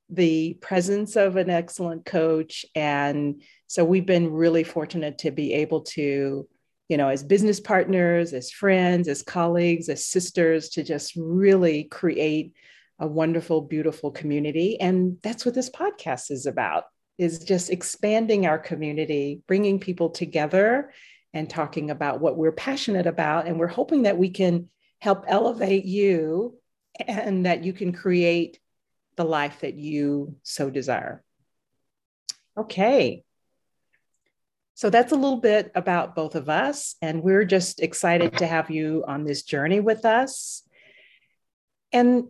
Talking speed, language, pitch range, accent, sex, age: 140 wpm, English, 160-205 Hz, American, female, 40-59